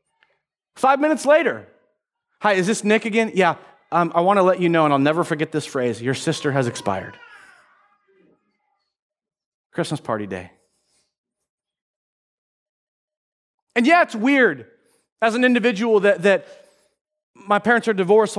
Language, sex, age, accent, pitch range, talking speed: English, male, 30-49, American, 190-275 Hz, 135 wpm